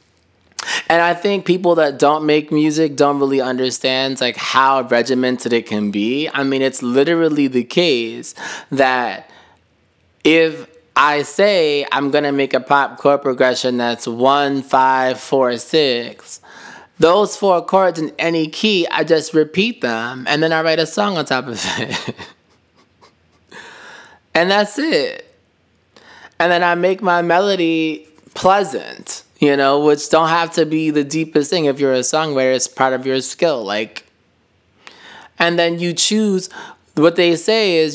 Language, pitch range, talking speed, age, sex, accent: English, 130-165 Hz, 155 wpm, 20-39, male, American